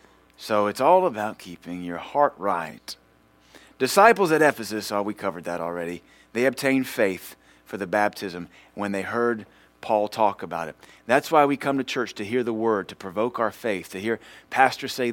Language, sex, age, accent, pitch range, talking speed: English, male, 30-49, American, 95-125 Hz, 185 wpm